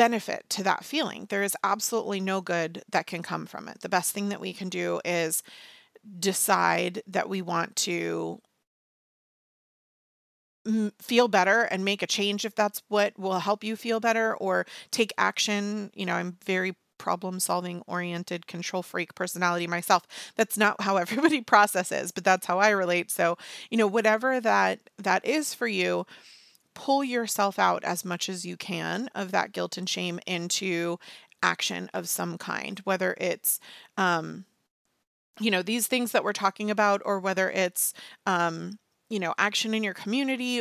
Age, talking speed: 30-49, 165 wpm